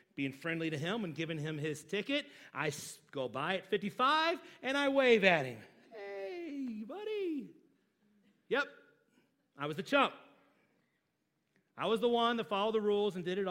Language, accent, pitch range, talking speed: English, American, 185-255 Hz, 165 wpm